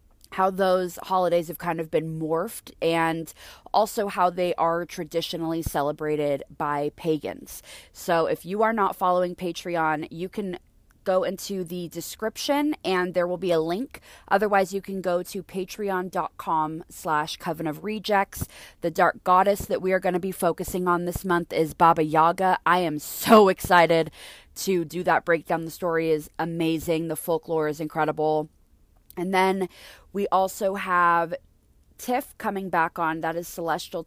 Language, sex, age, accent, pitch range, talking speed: English, female, 20-39, American, 165-200 Hz, 160 wpm